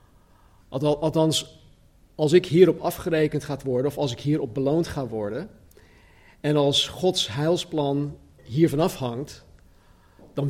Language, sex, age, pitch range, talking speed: Dutch, male, 40-59, 120-155 Hz, 125 wpm